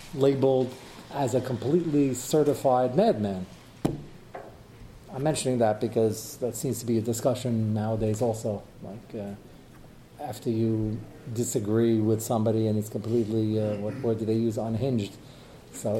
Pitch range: 110-145 Hz